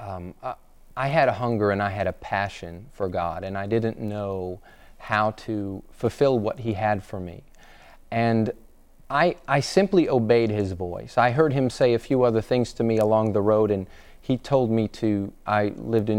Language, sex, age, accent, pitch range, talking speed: English, male, 30-49, American, 105-120 Hz, 195 wpm